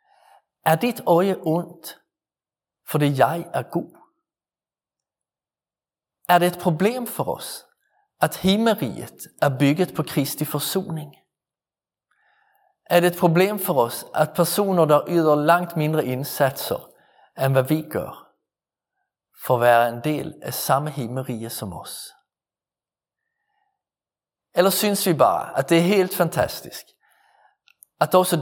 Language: Danish